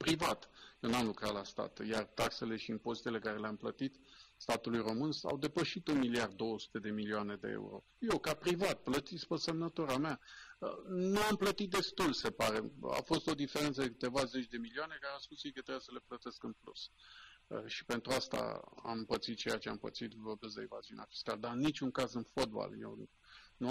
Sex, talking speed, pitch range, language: male, 195 wpm, 115-145 Hz, Romanian